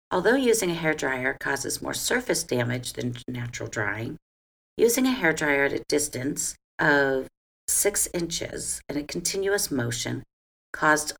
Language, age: English, 50-69